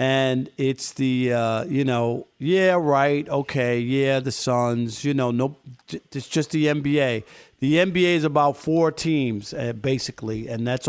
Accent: American